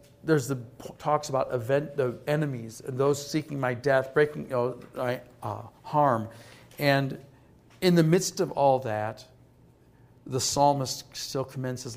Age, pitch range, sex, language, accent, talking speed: 50-69, 125-150 Hz, male, English, American, 150 wpm